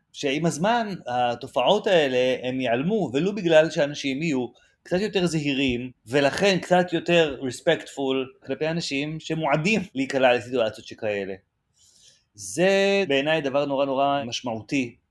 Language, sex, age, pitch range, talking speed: Hebrew, male, 30-49, 125-160 Hz, 115 wpm